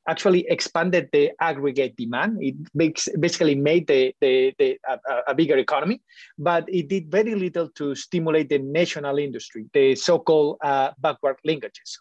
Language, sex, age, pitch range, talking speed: English, male, 30-49, 150-200 Hz, 150 wpm